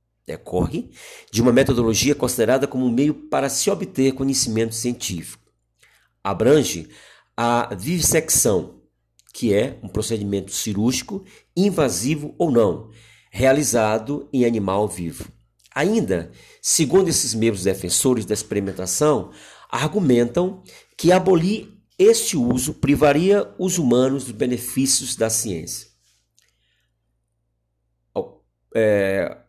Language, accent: Portuguese, Brazilian